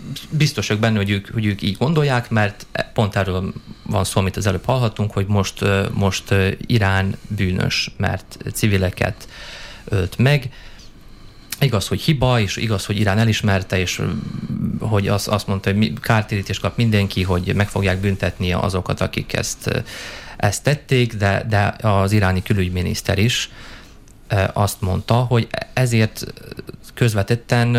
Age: 30-49